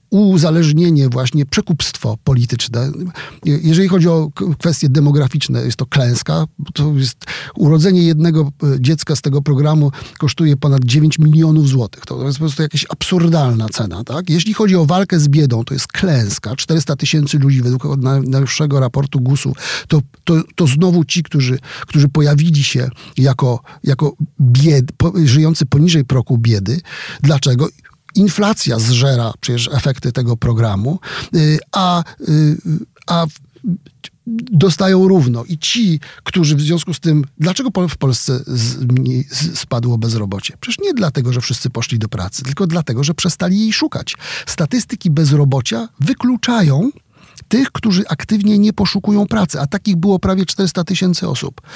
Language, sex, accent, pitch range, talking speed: Polish, male, native, 135-170 Hz, 140 wpm